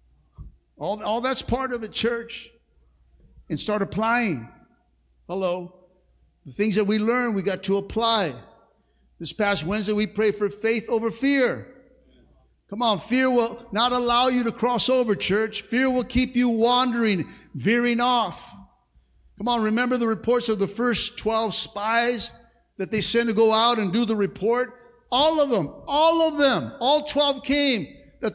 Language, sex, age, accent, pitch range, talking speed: English, male, 50-69, American, 220-310 Hz, 165 wpm